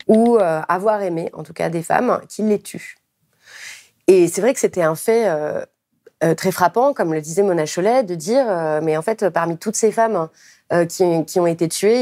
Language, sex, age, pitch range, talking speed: French, female, 30-49, 175-220 Hz, 215 wpm